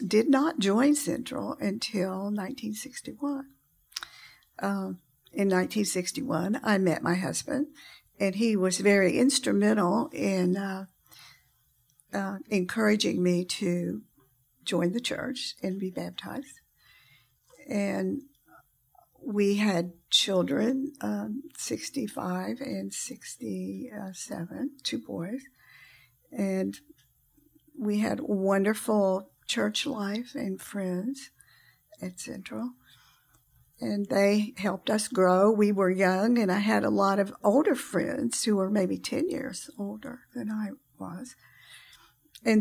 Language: English